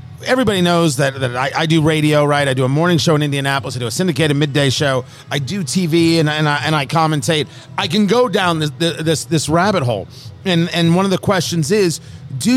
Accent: American